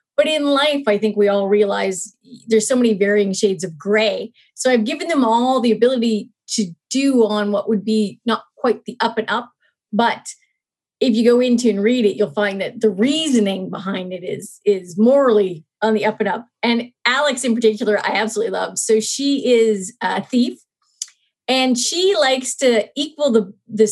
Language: English